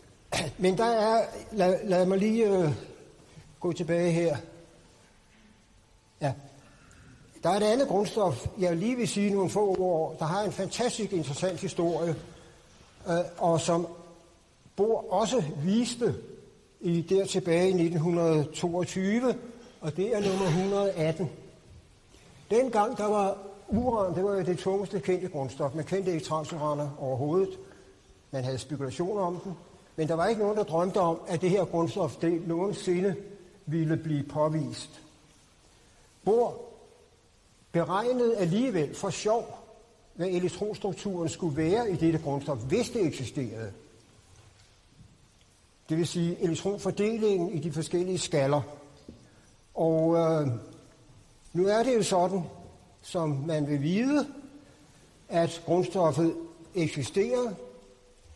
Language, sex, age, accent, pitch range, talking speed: Danish, male, 60-79, native, 150-195 Hz, 125 wpm